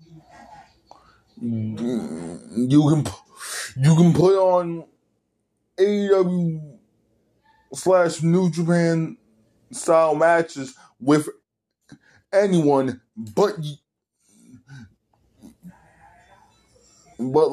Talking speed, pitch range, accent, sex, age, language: 55 wpm, 130-170 Hz, American, male, 20-39, English